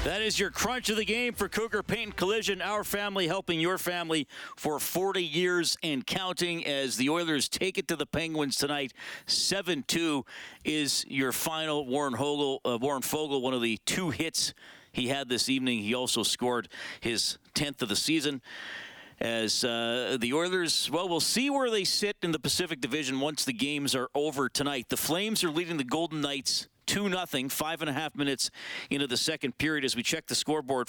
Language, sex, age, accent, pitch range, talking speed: English, male, 40-59, American, 135-170 Hz, 190 wpm